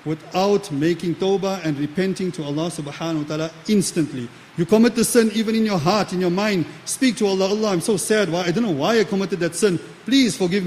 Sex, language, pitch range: male, English, 165-210 Hz